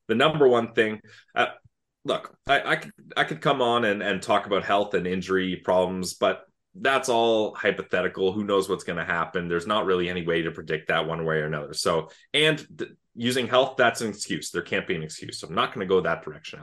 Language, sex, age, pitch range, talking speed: English, male, 20-39, 95-120 Hz, 215 wpm